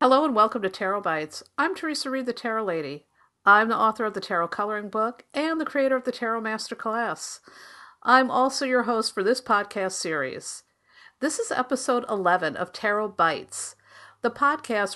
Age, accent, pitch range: 50-69, American, 175-250 Hz